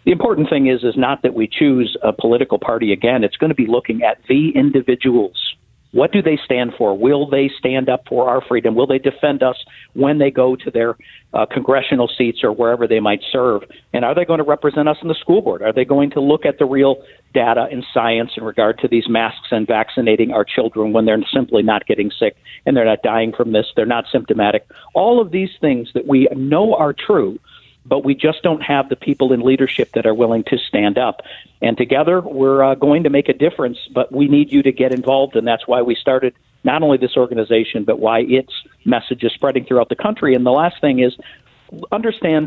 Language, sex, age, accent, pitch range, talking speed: English, male, 50-69, American, 125-150 Hz, 225 wpm